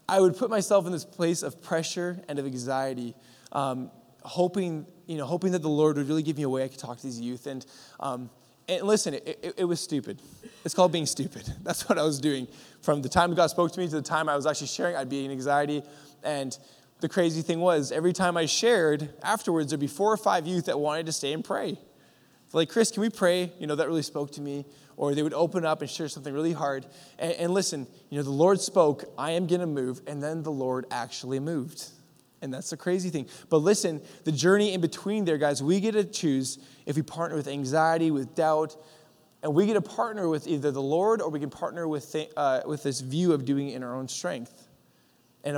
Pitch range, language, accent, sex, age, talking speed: 140-175 Hz, English, American, male, 20-39, 240 wpm